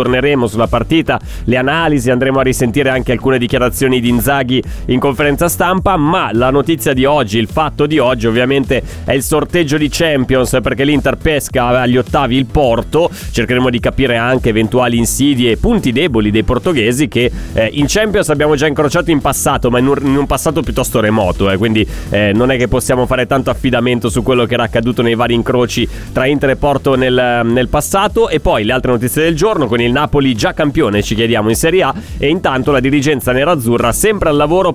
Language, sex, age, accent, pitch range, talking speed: Italian, male, 30-49, native, 125-155 Hz, 195 wpm